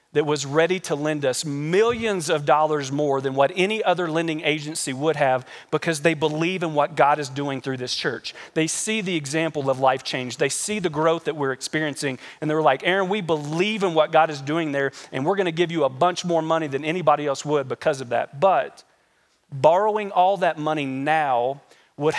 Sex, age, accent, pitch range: male, 40-59, American, 140-165 Hz